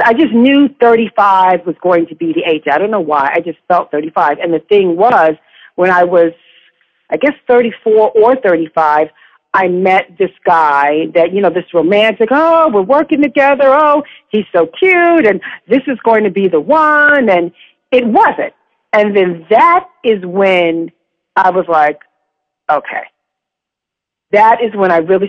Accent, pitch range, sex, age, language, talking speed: American, 180-255 Hz, female, 50-69, English, 170 wpm